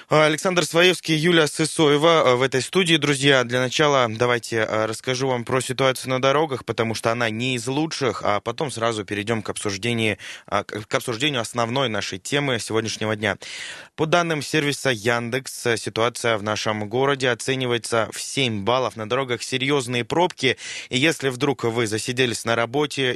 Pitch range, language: 110-135 Hz, Russian